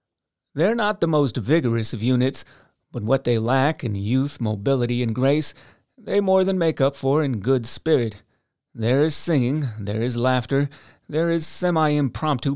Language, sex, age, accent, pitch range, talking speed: English, male, 30-49, American, 120-150 Hz, 160 wpm